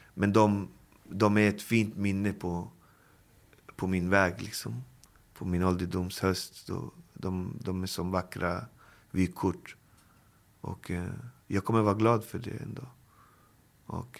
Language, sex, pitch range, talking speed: Swedish, male, 90-110 Hz, 130 wpm